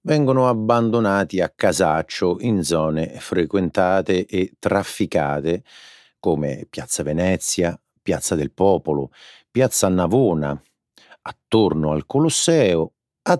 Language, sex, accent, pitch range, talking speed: Italian, male, native, 80-120 Hz, 95 wpm